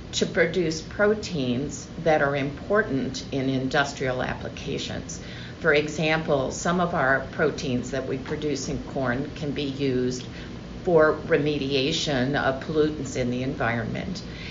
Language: English